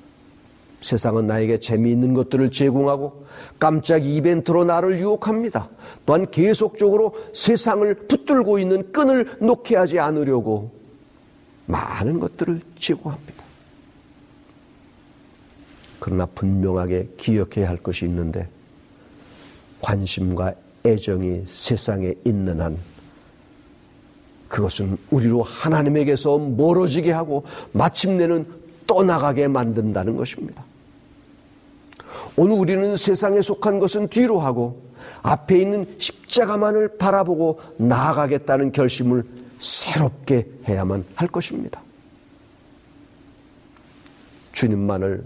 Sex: male